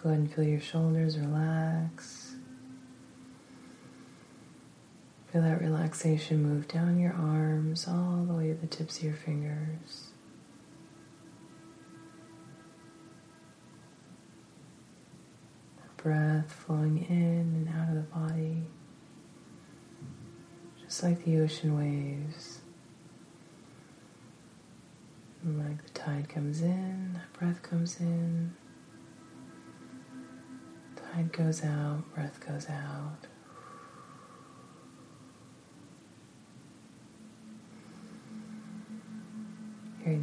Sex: female